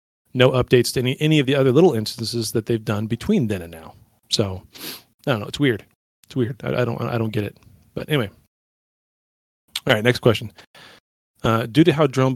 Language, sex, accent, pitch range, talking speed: English, male, American, 110-130 Hz, 210 wpm